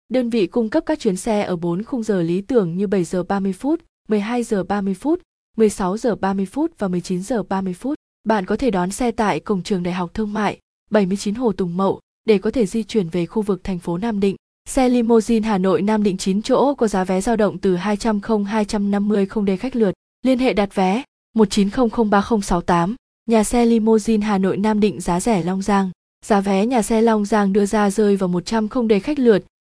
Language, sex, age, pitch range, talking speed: Vietnamese, female, 20-39, 190-230 Hz, 220 wpm